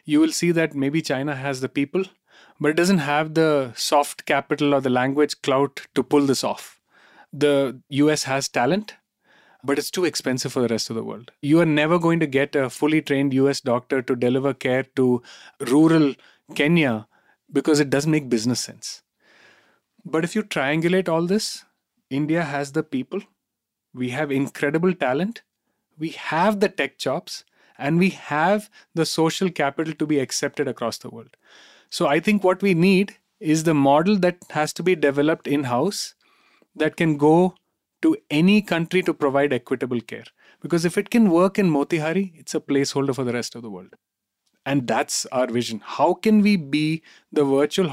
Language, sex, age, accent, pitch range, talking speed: English, male, 30-49, Indian, 140-175 Hz, 180 wpm